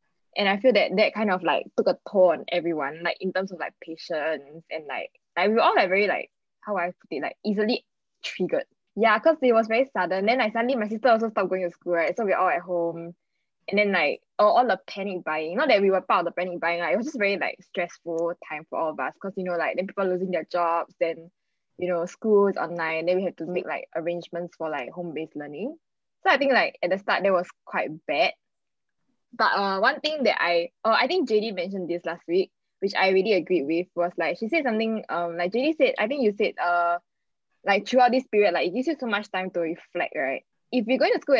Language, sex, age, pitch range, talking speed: English, female, 10-29, 175-225 Hz, 255 wpm